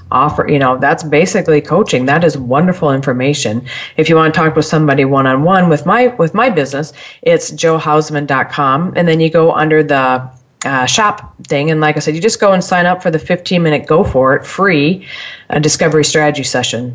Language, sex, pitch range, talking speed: English, female, 145-180 Hz, 195 wpm